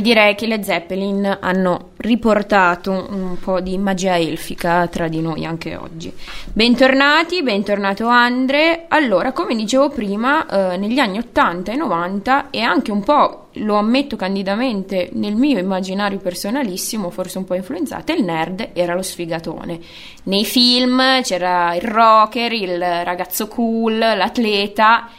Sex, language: female, Italian